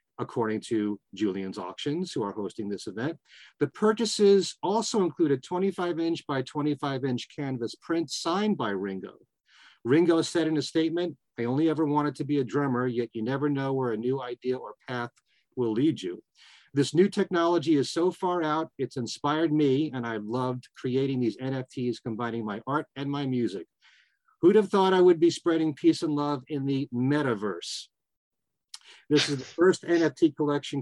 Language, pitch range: English, 125-165 Hz